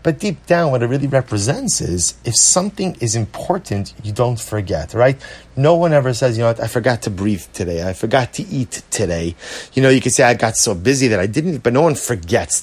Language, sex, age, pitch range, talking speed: English, male, 30-49, 95-130 Hz, 235 wpm